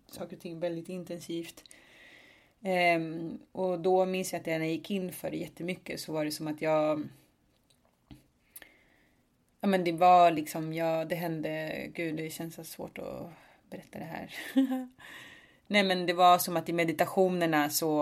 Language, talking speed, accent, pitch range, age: English, 155 wpm, Swedish, 160-180 Hz, 30-49